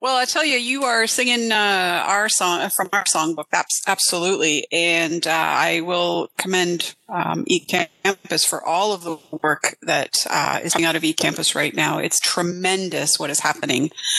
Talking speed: 175 wpm